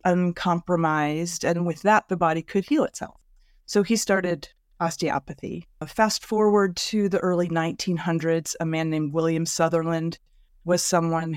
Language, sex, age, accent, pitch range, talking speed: English, female, 30-49, American, 140-180 Hz, 135 wpm